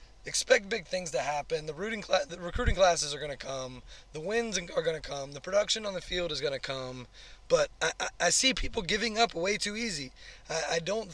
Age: 20-39